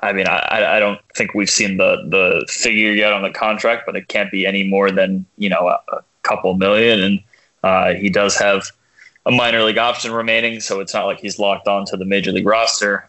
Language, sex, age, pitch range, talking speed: English, male, 20-39, 95-115 Hz, 230 wpm